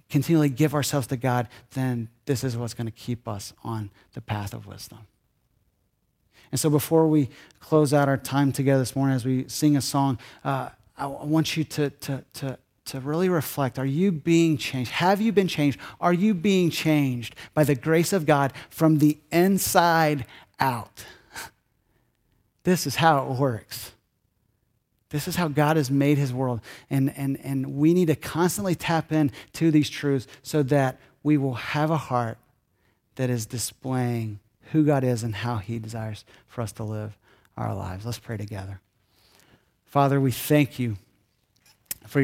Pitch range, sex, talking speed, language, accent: 120-155 Hz, male, 170 wpm, English, American